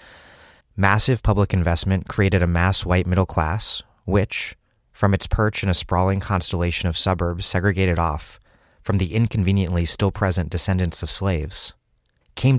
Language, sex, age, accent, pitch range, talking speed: English, male, 30-49, American, 90-105 Hz, 140 wpm